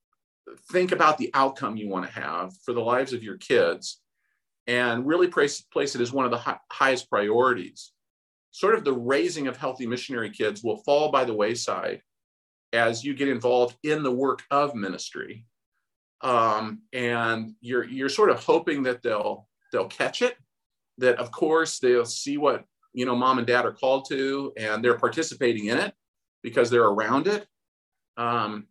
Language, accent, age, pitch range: English, American, 50-69, 120-160 Hz